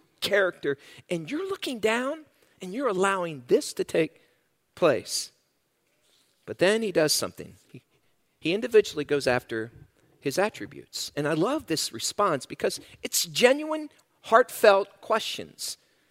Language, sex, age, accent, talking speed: English, male, 50-69, American, 125 wpm